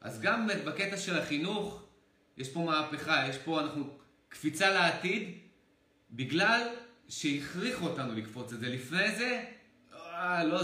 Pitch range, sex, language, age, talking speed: 135-175 Hz, male, Hebrew, 30-49, 130 wpm